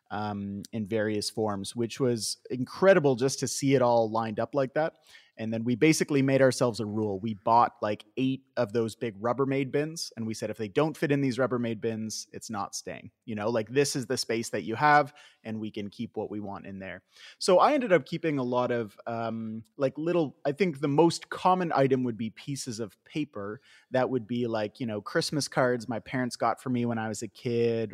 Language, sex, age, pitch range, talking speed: English, male, 30-49, 110-135 Hz, 230 wpm